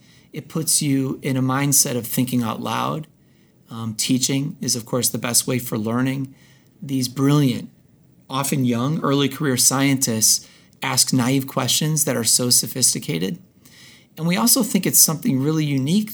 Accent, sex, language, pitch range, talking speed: American, male, English, 125-160 Hz, 155 wpm